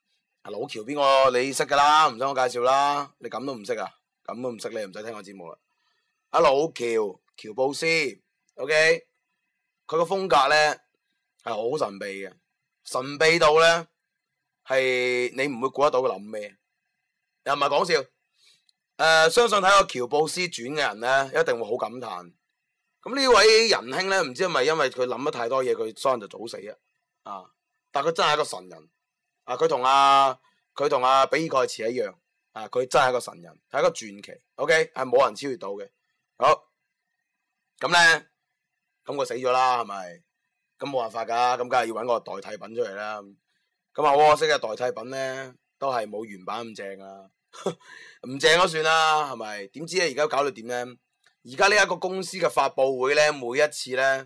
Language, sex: Chinese, male